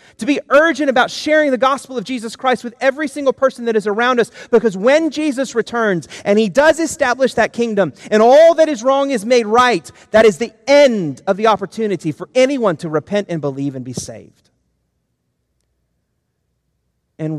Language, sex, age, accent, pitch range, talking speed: English, male, 30-49, American, 130-195 Hz, 185 wpm